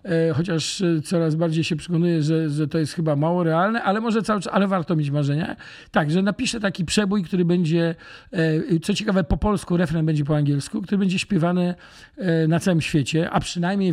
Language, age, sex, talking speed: Polish, 50-69, male, 185 wpm